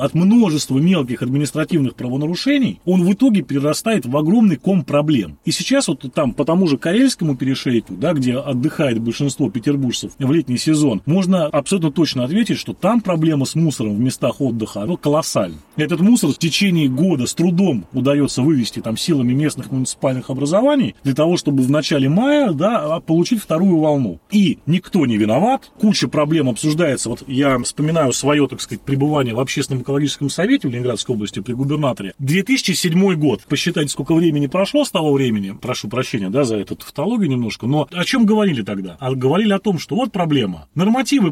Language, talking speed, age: Russian, 170 wpm, 30-49